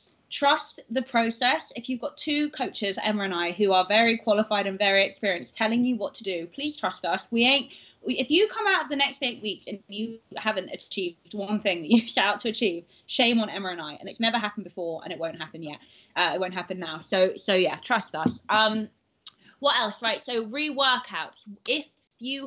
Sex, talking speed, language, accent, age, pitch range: female, 215 wpm, English, British, 20-39, 195-245 Hz